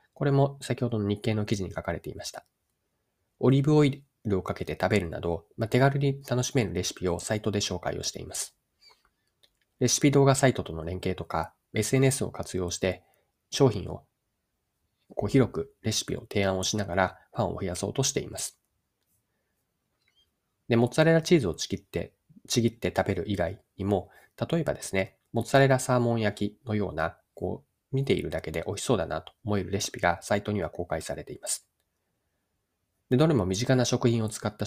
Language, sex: Japanese, male